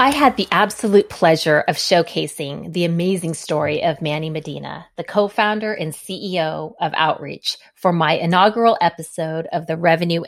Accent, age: American, 30-49